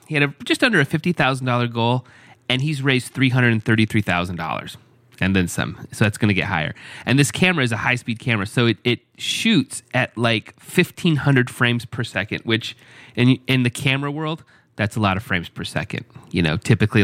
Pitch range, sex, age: 105-140 Hz, male, 30-49